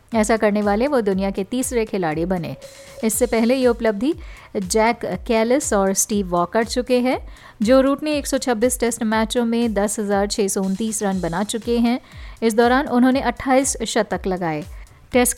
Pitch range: 205-250 Hz